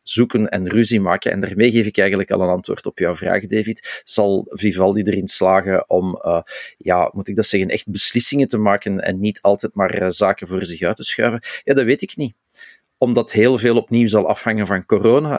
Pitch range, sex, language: 100-115 Hz, male, Dutch